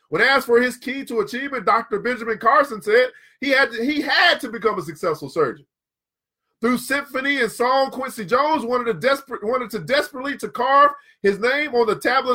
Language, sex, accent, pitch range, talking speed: English, male, American, 215-285 Hz, 175 wpm